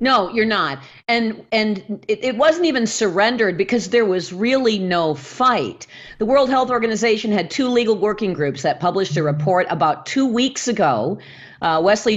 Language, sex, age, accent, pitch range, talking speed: English, female, 40-59, American, 175-235 Hz, 175 wpm